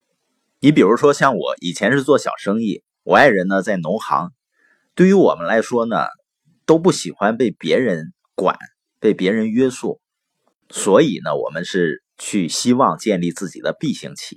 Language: Chinese